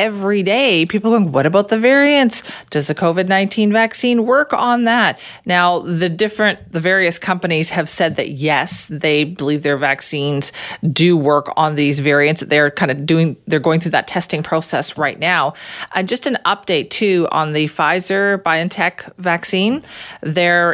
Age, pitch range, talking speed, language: 40-59, 155-190 Hz, 165 wpm, English